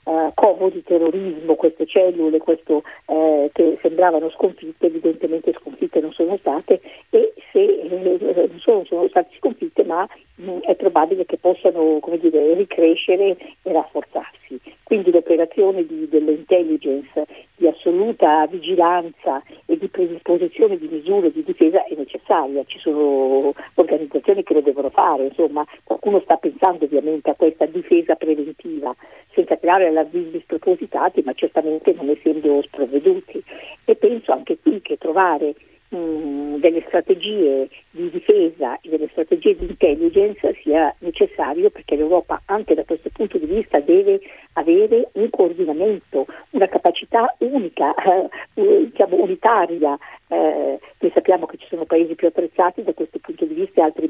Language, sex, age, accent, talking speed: Italian, female, 50-69, native, 140 wpm